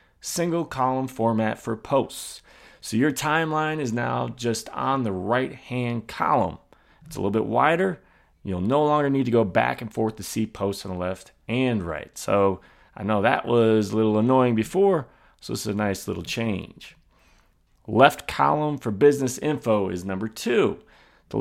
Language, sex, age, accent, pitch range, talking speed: English, male, 30-49, American, 105-130 Hz, 170 wpm